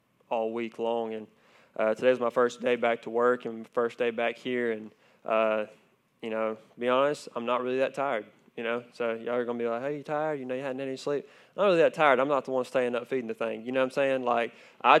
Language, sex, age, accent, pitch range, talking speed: English, male, 20-39, American, 120-135 Hz, 270 wpm